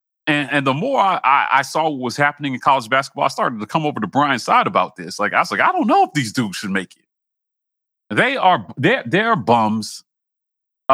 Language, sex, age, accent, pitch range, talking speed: English, male, 40-59, American, 115-155 Hz, 230 wpm